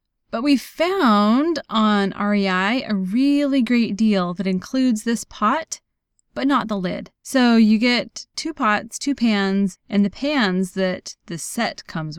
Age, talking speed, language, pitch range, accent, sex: 20-39, 155 wpm, English, 180-230 Hz, American, female